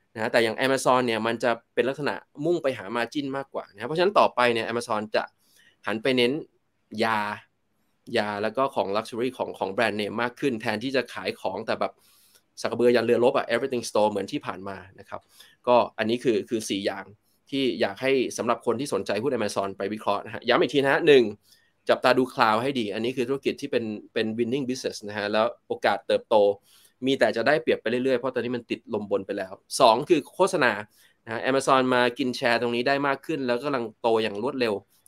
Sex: male